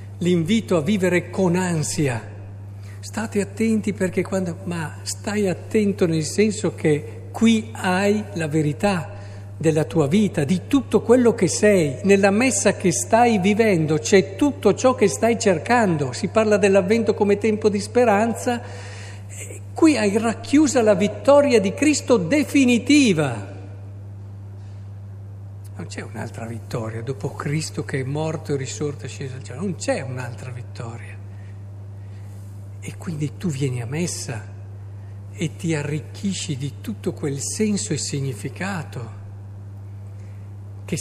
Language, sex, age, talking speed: Italian, male, 50-69, 125 wpm